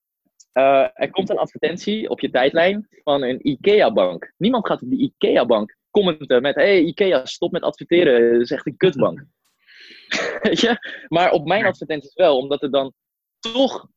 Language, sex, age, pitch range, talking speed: Dutch, male, 20-39, 135-185 Hz, 165 wpm